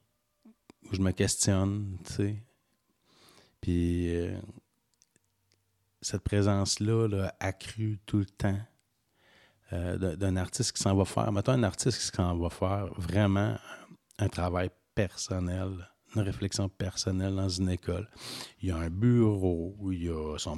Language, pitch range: French, 95-115 Hz